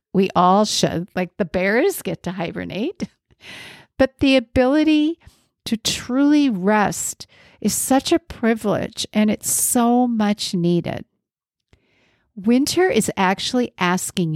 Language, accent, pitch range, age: English, American, 185-245 Hz, 50-69